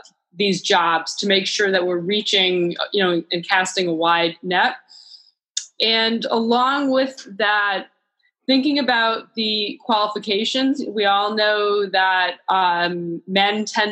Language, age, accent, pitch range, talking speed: English, 20-39, American, 185-245 Hz, 130 wpm